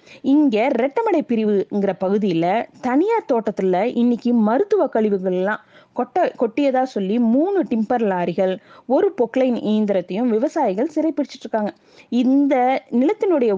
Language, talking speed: Tamil, 105 wpm